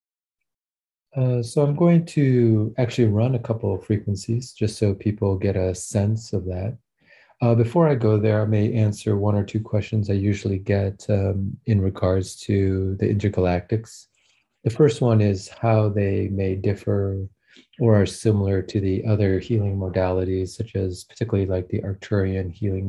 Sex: male